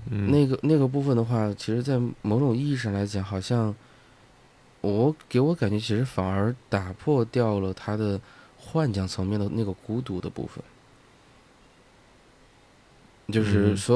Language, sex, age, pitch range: Chinese, male, 20-39, 100-125 Hz